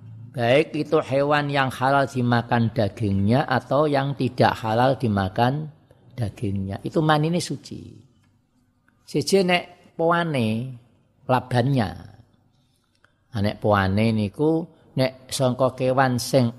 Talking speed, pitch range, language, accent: 100 wpm, 115-135 Hz, Indonesian, native